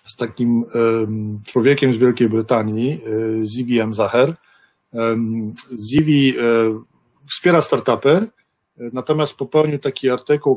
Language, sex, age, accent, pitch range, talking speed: Polish, male, 40-59, native, 115-140 Hz, 90 wpm